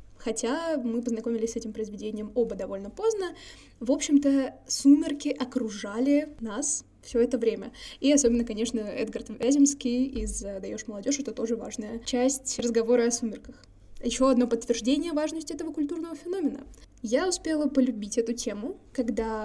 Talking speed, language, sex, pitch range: 140 wpm, Russian, female, 230-270 Hz